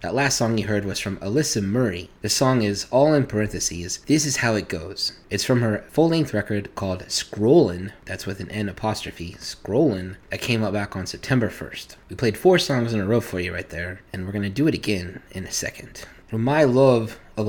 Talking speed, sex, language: 225 wpm, male, English